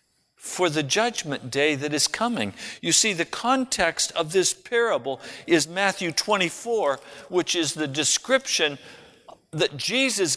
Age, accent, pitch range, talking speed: 60-79, American, 125-195 Hz, 135 wpm